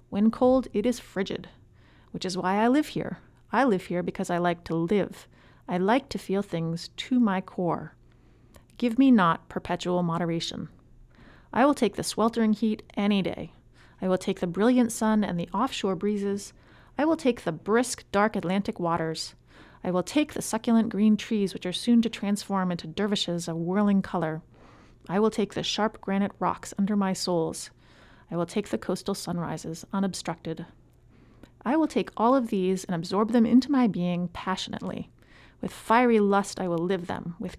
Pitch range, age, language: 175-225 Hz, 30-49, English